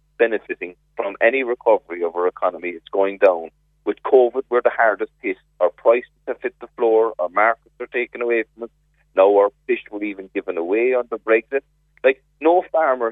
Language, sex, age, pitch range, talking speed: English, male, 40-59, 115-165 Hz, 190 wpm